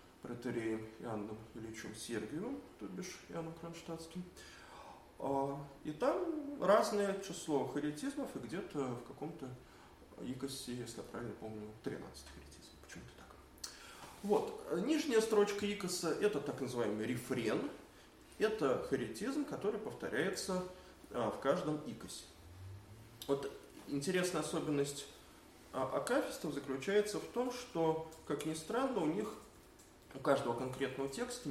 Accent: native